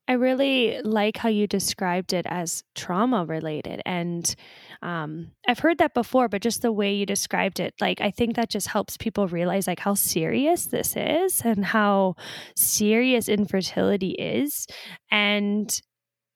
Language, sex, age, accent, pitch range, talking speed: English, female, 10-29, American, 190-230 Hz, 155 wpm